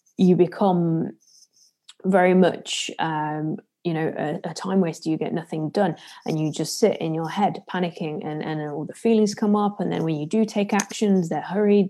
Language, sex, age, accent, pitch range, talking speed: English, female, 20-39, British, 160-200 Hz, 195 wpm